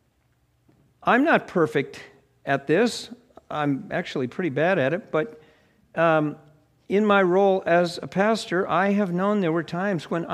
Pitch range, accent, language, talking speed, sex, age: 150-190 Hz, American, English, 150 wpm, male, 50-69